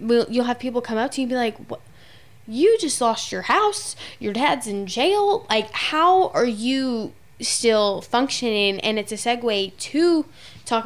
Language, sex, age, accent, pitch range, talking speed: English, female, 10-29, American, 190-220 Hz, 175 wpm